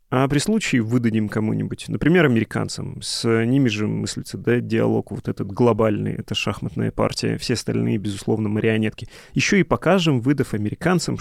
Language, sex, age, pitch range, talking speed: Russian, male, 30-49, 110-130 Hz, 150 wpm